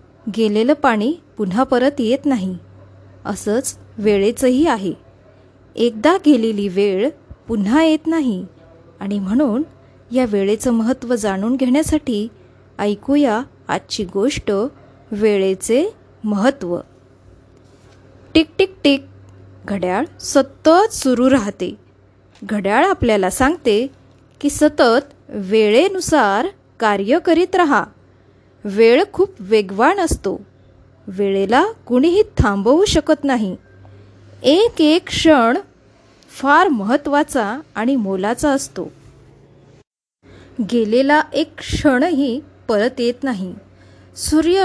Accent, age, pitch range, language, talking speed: native, 20-39, 205-295 Hz, Marathi, 90 wpm